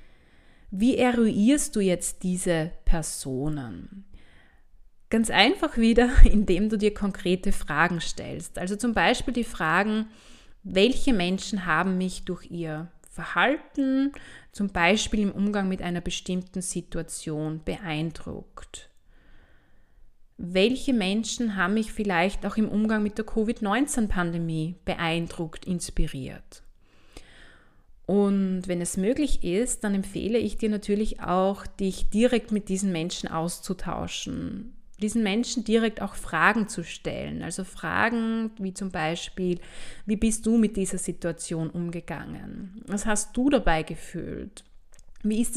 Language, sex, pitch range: German, female, 175-225 Hz